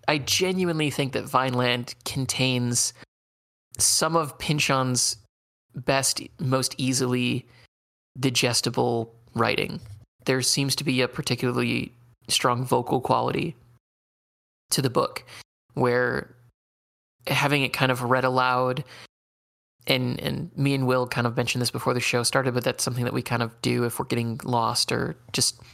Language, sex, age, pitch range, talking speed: English, male, 20-39, 115-130 Hz, 140 wpm